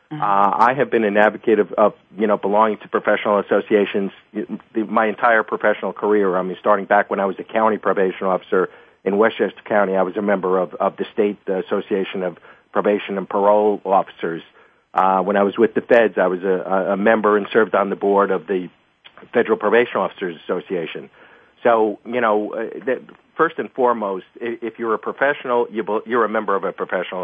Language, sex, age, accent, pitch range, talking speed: English, male, 50-69, American, 100-115 Hz, 185 wpm